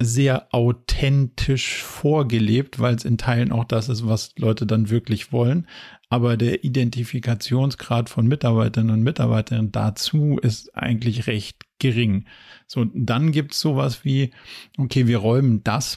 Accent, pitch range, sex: German, 115-130 Hz, male